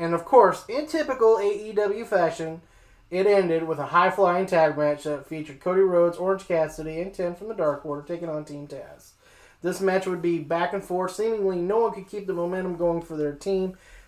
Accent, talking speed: American, 205 wpm